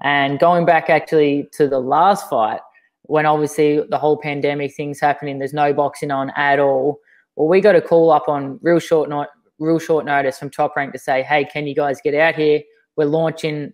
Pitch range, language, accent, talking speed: 145-165 Hz, English, Australian, 200 wpm